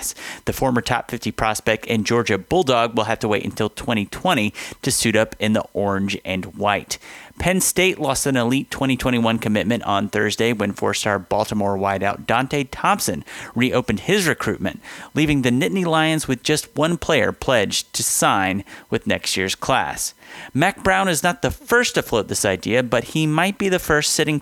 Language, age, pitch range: English, 30-49, 110-140 Hz